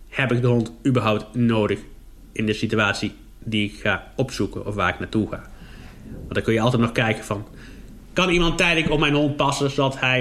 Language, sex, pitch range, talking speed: Dutch, male, 110-135 Hz, 205 wpm